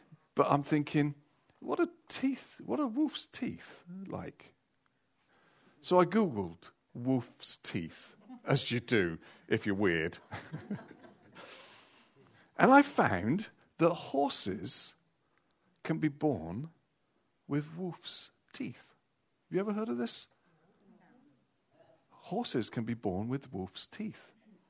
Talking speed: 110 wpm